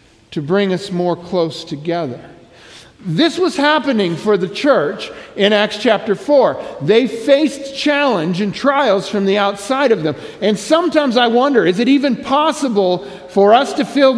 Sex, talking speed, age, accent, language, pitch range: male, 160 wpm, 50-69, American, English, 190-255 Hz